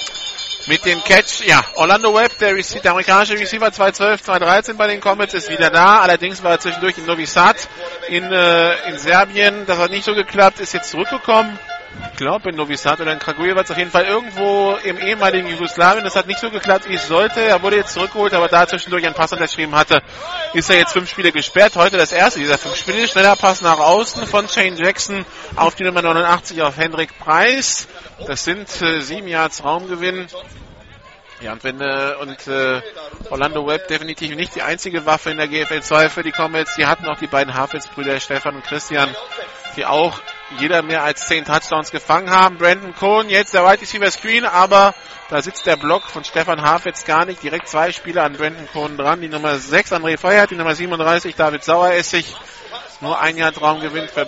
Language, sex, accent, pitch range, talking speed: German, male, German, 155-200 Hz, 200 wpm